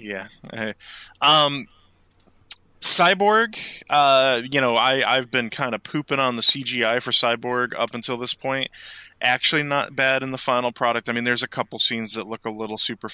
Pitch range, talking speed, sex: 110-135 Hz, 180 wpm, male